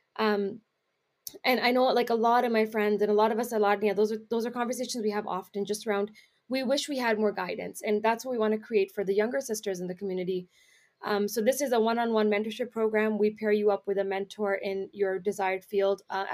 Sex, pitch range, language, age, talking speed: female, 195-225 Hz, English, 20-39, 245 wpm